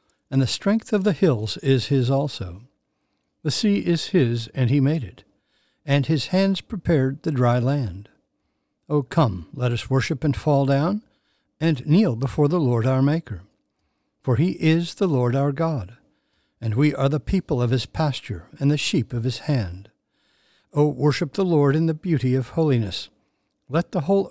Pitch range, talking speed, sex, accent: 125-155 Hz, 180 wpm, male, American